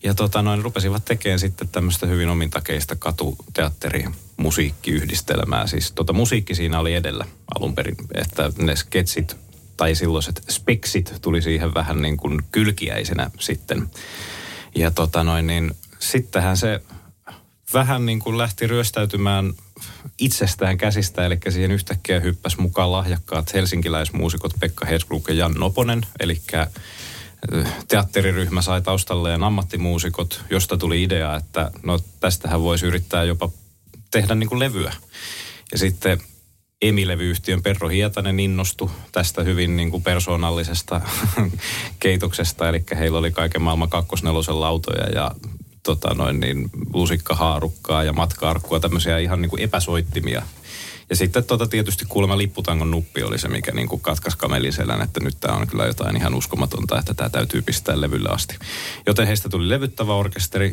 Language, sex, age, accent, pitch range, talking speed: Finnish, male, 30-49, native, 80-100 Hz, 130 wpm